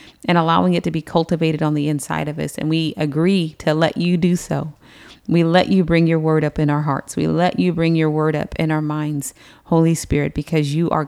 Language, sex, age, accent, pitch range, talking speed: English, female, 40-59, American, 150-175 Hz, 240 wpm